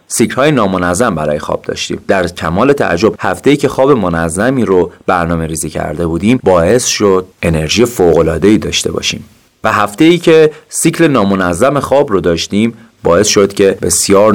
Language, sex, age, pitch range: Persian, male, 30-49, 90-140 Hz